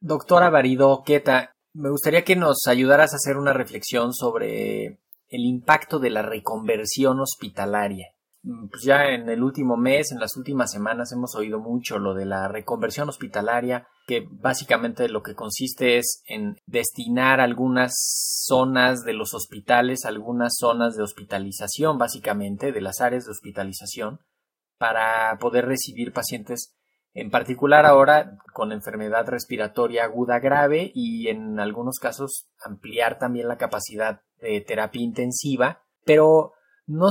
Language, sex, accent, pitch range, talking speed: Spanish, male, Mexican, 115-145 Hz, 135 wpm